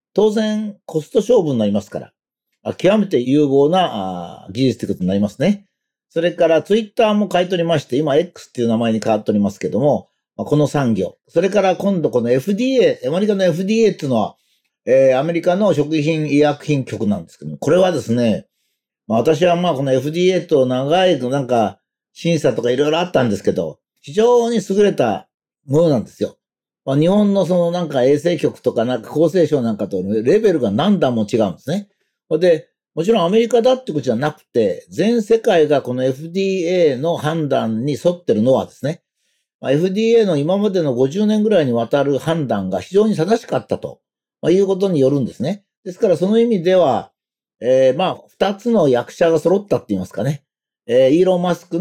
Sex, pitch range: male, 130-195 Hz